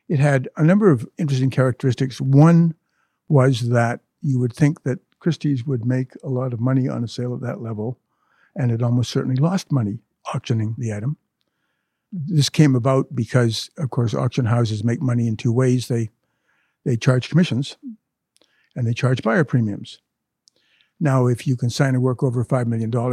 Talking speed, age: 175 wpm, 60-79